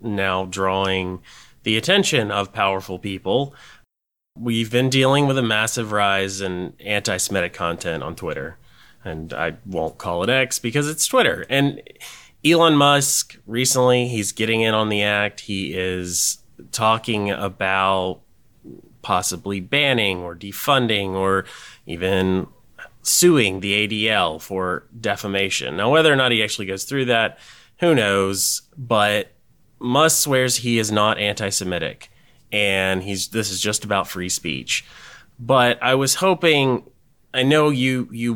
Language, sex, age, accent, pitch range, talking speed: English, male, 30-49, American, 95-125 Hz, 135 wpm